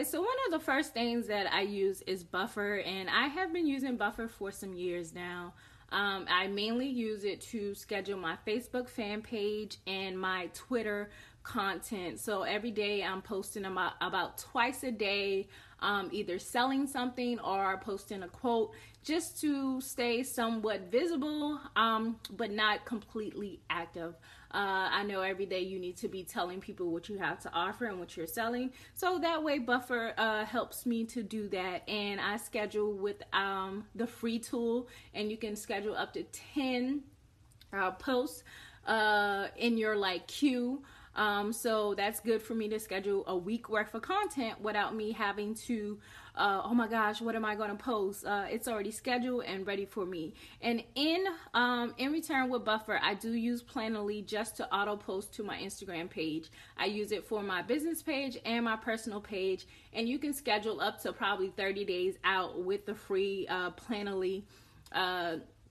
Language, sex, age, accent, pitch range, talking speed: English, female, 20-39, American, 195-240 Hz, 180 wpm